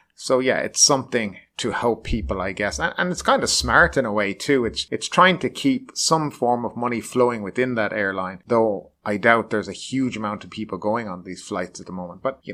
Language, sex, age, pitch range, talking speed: English, male, 30-49, 100-125 Hz, 240 wpm